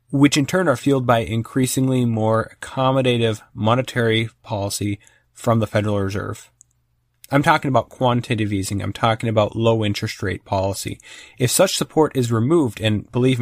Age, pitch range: 30-49, 105-130 Hz